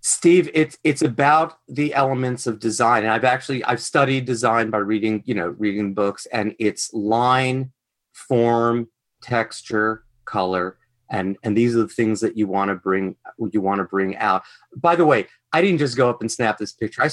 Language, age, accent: English, 30-49, American